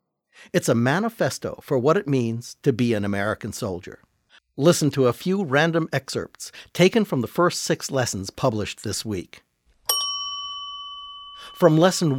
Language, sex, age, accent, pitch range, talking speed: English, male, 50-69, American, 110-165 Hz, 145 wpm